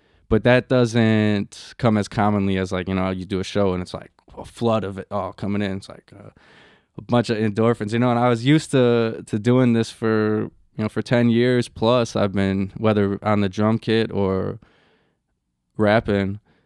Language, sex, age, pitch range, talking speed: English, male, 20-39, 95-110 Hz, 205 wpm